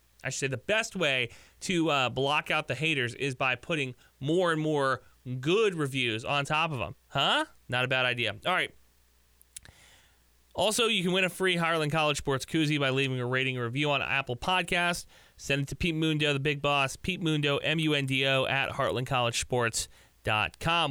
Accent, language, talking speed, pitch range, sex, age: American, English, 180 wpm, 130-165 Hz, male, 30-49